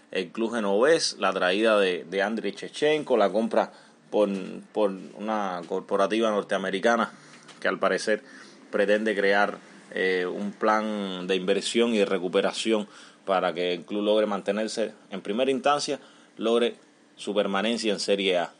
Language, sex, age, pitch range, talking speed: Spanish, male, 30-49, 100-120 Hz, 140 wpm